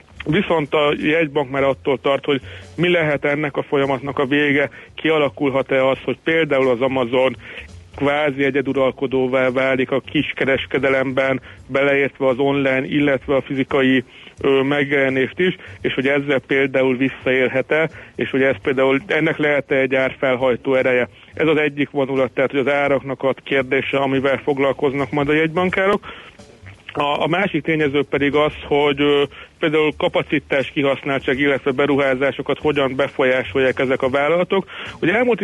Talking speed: 135 wpm